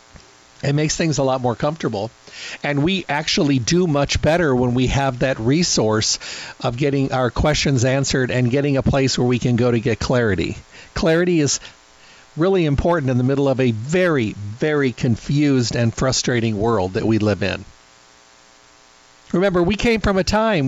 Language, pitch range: English, 115-145 Hz